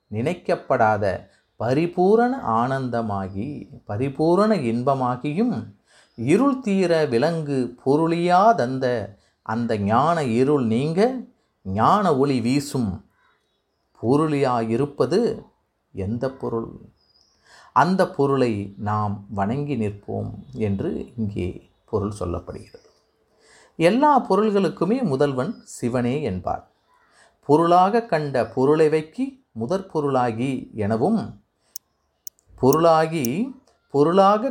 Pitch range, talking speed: 110-165 Hz, 75 wpm